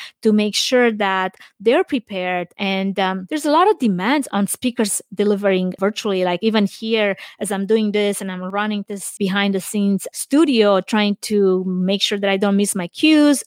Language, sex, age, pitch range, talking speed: English, female, 20-39, 195-255 Hz, 185 wpm